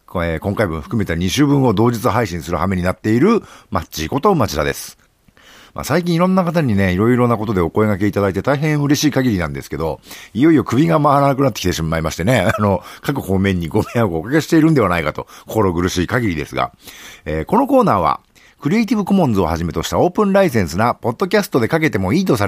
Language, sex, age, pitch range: Japanese, male, 50-69, 95-155 Hz